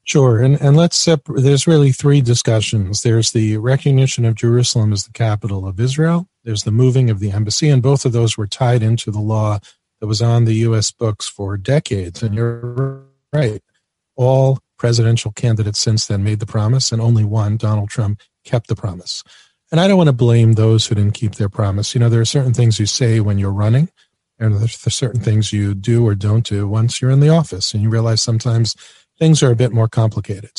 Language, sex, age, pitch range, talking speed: English, male, 40-59, 110-125 Hz, 210 wpm